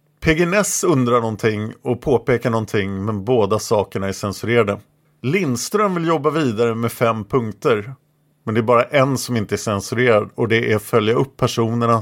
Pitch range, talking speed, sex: 105-150 Hz, 170 wpm, male